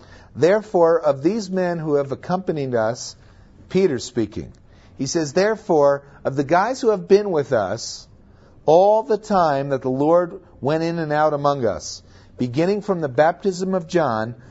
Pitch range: 120-170 Hz